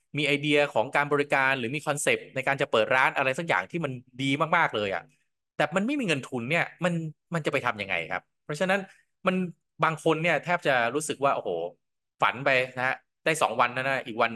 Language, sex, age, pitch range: Thai, male, 20-39, 120-160 Hz